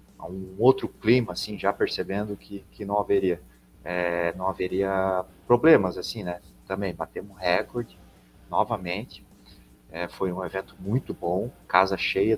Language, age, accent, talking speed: Portuguese, 30-49, Brazilian, 125 wpm